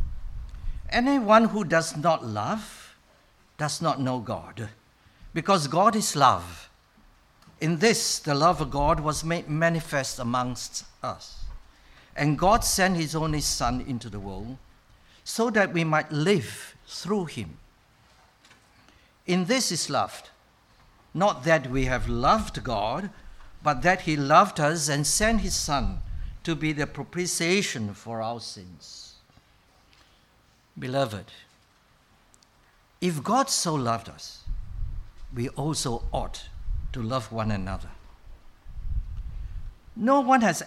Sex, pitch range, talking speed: male, 100-170 Hz, 120 wpm